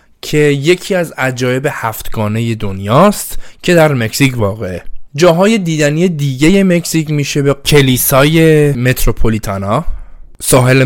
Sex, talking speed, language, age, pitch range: male, 105 wpm, Persian, 20-39, 110-145 Hz